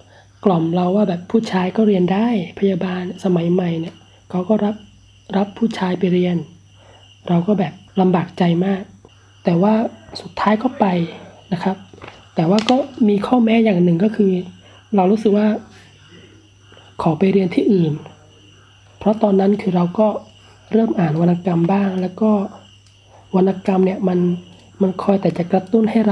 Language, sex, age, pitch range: Thai, male, 20-39, 160-205 Hz